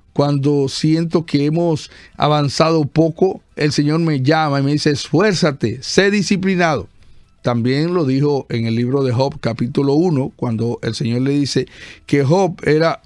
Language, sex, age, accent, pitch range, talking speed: Spanish, male, 50-69, American, 135-175 Hz, 155 wpm